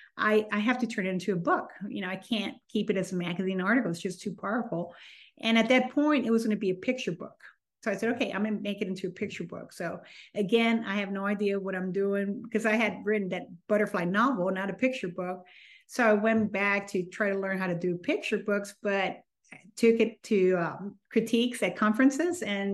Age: 40-59